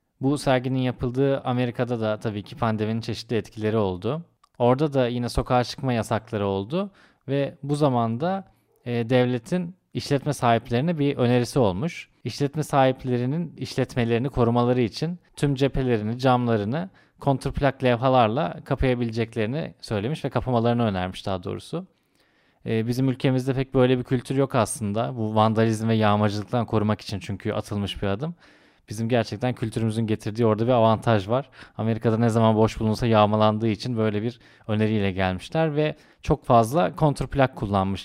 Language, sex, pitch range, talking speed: Turkish, male, 110-135 Hz, 140 wpm